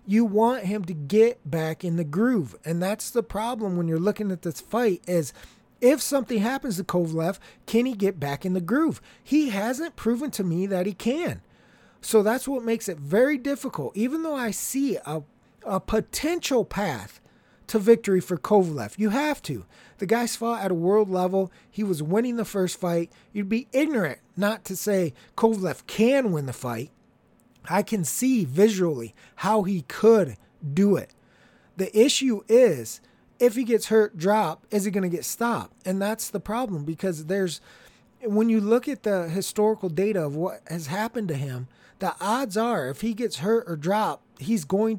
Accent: American